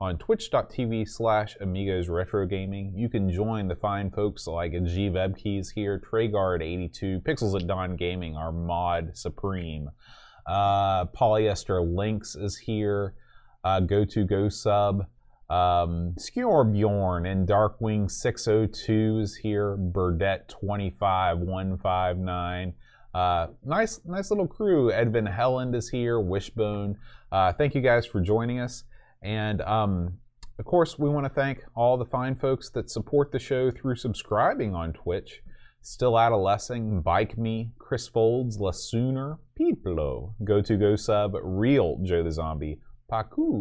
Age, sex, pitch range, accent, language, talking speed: 30-49, male, 90-115 Hz, American, English, 125 wpm